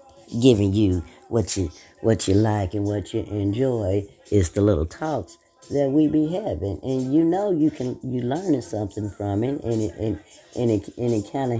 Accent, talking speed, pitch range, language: American, 195 wpm, 95-130 Hz, English